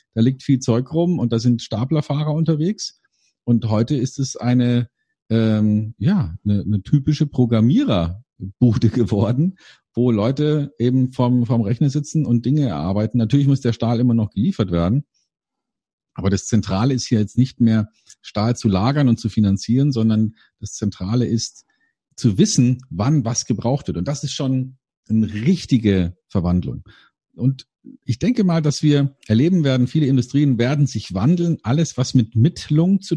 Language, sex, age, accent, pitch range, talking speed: German, male, 50-69, German, 115-150 Hz, 160 wpm